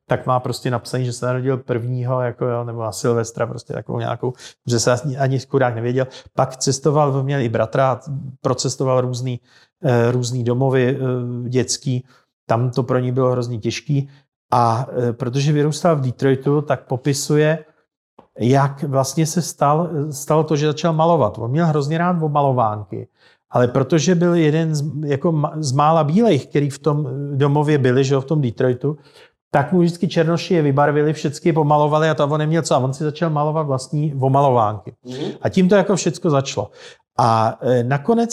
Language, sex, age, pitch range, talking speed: Slovak, male, 40-59, 125-155 Hz, 160 wpm